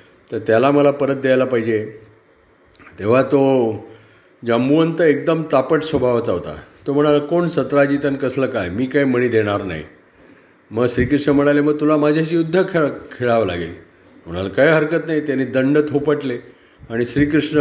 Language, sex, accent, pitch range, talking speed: Marathi, male, native, 120-150 Hz, 150 wpm